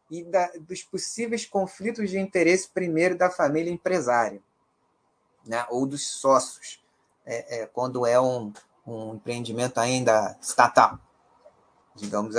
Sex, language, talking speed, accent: male, Portuguese, 120 wpm, Brazilian